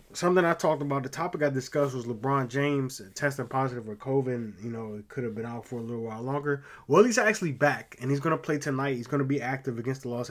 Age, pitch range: 20-39, 125-145 Hz